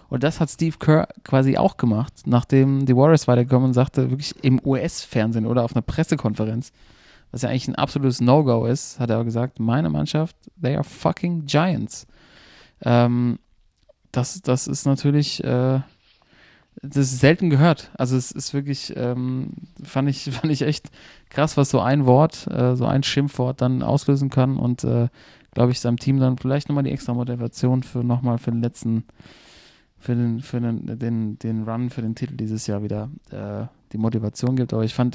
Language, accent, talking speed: German, German, 185 wpm